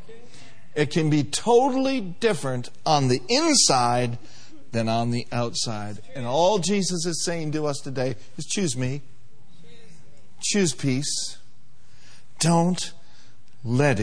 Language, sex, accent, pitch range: English, male, American, 120-160 Hz